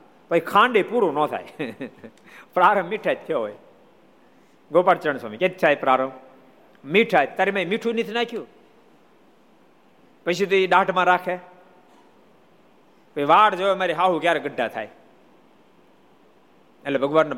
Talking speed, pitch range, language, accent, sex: 40 wpm, 140-185 Hz, Gujarati, native, male